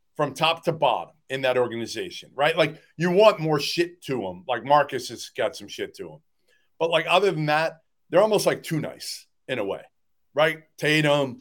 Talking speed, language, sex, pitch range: 200 wpm, English, male, 135-180 Hz